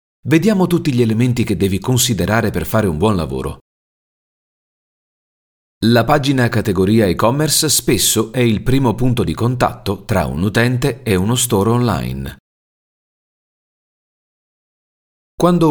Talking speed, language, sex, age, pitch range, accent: 120 wpm, Italian, male, 40-59, 90-120 Hz, native